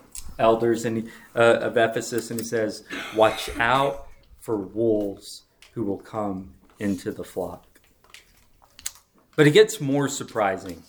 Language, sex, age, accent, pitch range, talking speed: English, male, 40-59, American, 110-155 Hz, 120 wpm